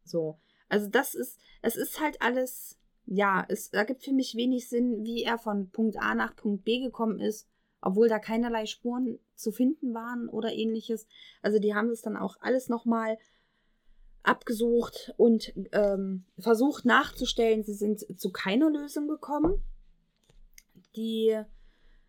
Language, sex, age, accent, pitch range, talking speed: German, female, 20-39, German, 205-235 Hz, 145 wpm